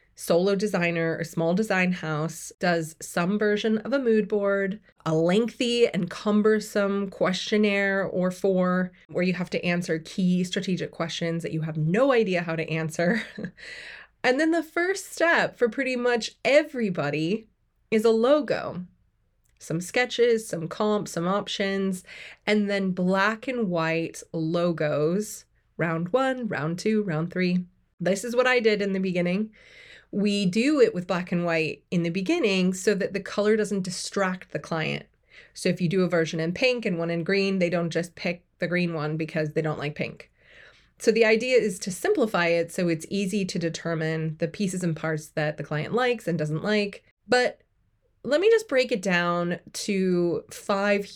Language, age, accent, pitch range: English, 20-39, American, 165-215 Hz